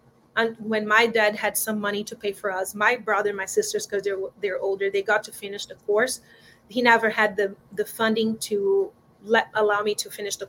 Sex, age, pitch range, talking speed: female, 30-49, 205-245 Hz, 225 wpm